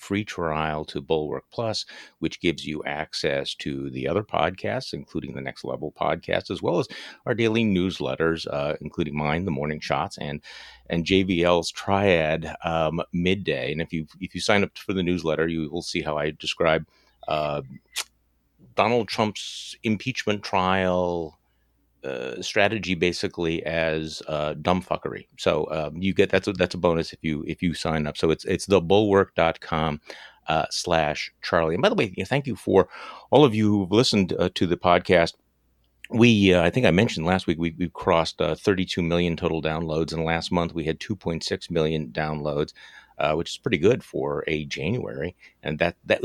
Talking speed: 180 wpm